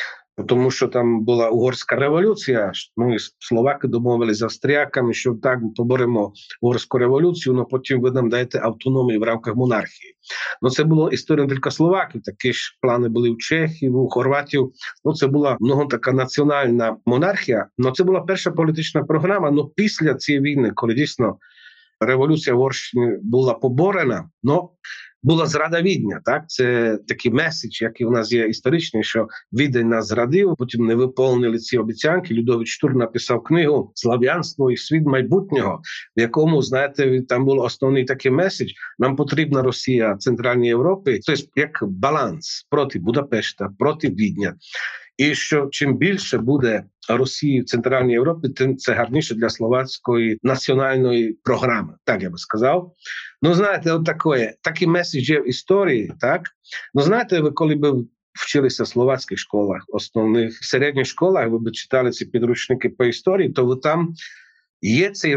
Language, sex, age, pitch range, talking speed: Ukrainian, male, 40-59, 120-150 Hz, 150 wpm